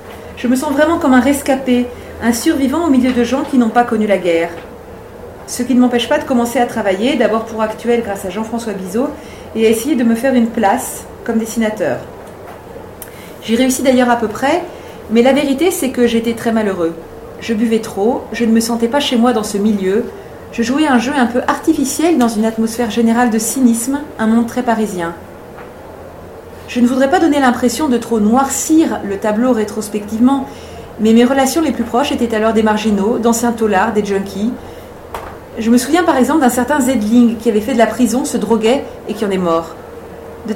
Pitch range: 220-260 Hz